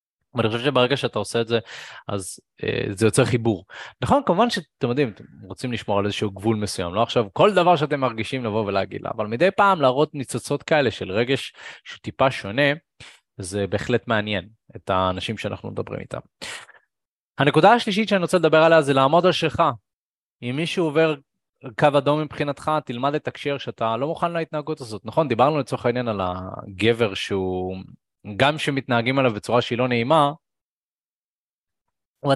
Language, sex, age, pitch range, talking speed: Hebrew, male, 20-39, 115-160 Hz, 155 wpm